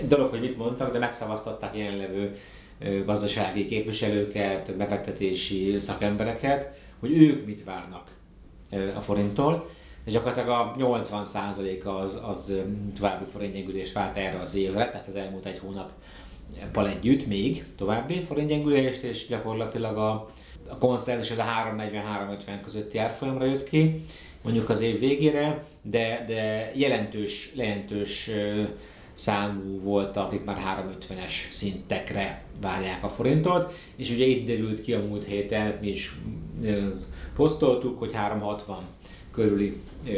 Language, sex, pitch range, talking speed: Hungarian, male, 100-115 Hz, 125 wpm